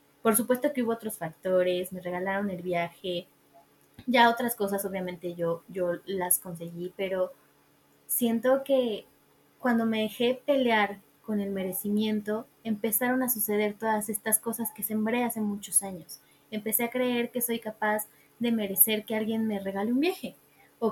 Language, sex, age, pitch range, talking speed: Spanish, female, 20-39, 200-240 Hz, 155 wpm